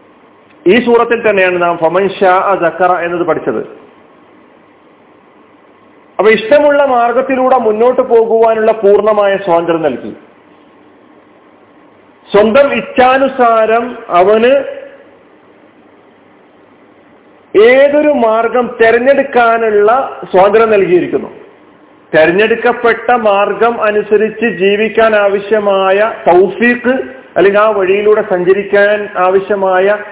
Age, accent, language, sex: 40-59, native, Malayalam, male